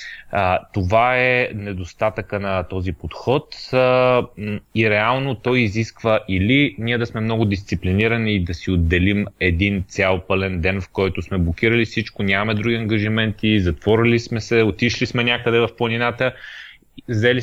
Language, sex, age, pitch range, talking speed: Bulgarian, male, 30-49, 95-115 Hz, 140 wpm